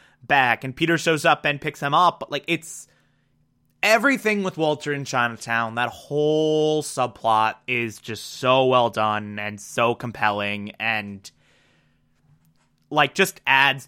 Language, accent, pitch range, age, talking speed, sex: English, American, 115-155 Hz, 20-39, 140 wpm, male